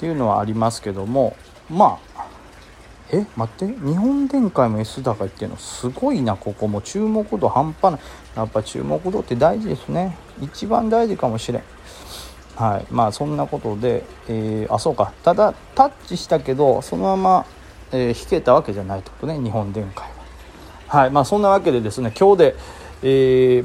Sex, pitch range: male, 110-155 Hz